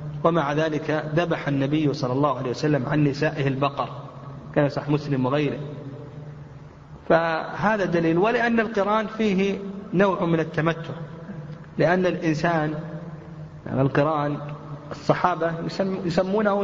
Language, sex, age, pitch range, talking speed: Arabic, male, 40-59, 145-170 Hz, 105 wpm